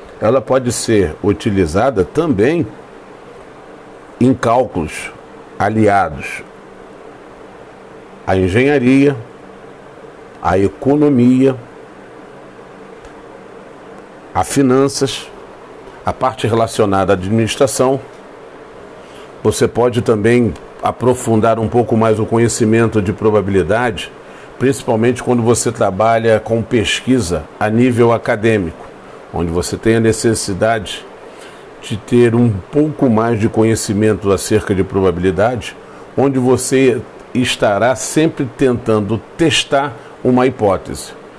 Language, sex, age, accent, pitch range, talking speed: Portuguese, male, 50-69, Brazilian, 105-130 Hz, 90 wpm